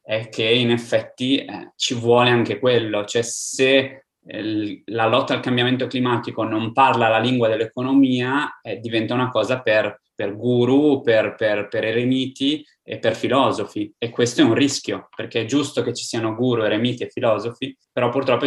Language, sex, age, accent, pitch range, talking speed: Italian, male, 20-39, native, 110-125 Hz, 165 wpm